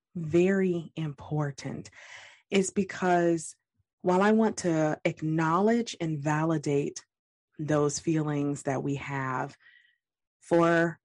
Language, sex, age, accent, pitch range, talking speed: English, female, 20-39, American, 145-190 Hz, 90 wpm